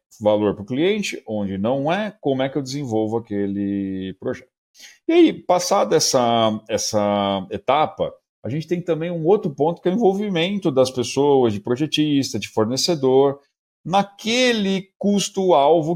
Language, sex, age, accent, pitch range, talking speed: Portuguese, male, 40-59, Brazilian, 115-155 Hz, 145 wpm